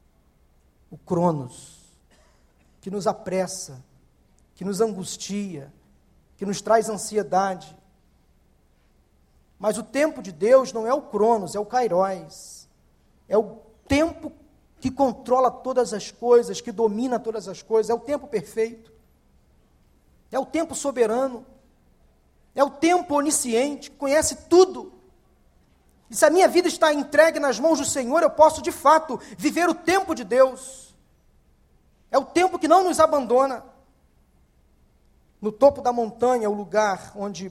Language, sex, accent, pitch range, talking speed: Portuguese, male, Brazilian, 175-260 Hz, 140 wpm